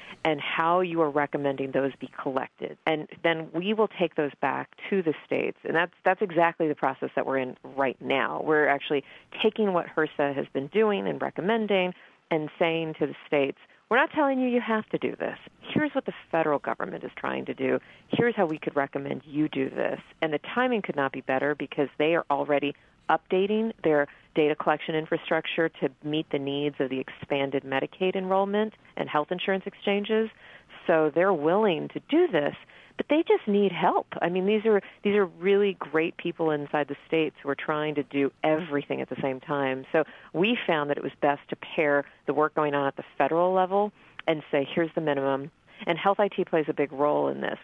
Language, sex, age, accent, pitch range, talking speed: English, female, 40-59, American, 145-190 Hz, 205 wpm